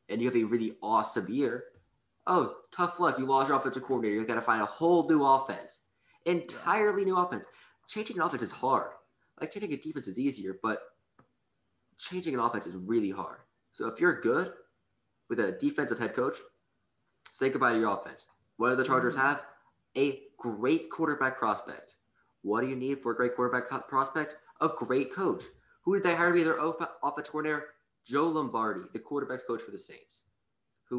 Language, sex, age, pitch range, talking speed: English, male, 20-39, 115-155 Hz, 190 wpm